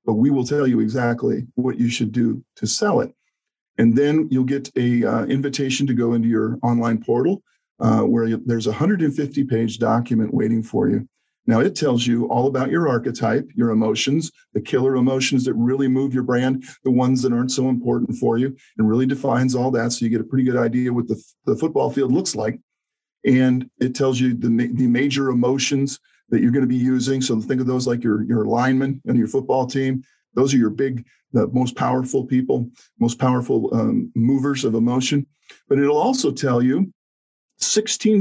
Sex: male